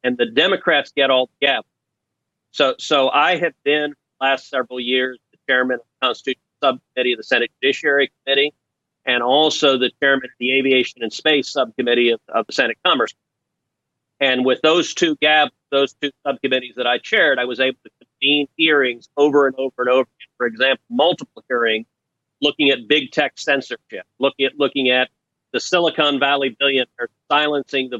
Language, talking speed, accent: English, 185 wpm, American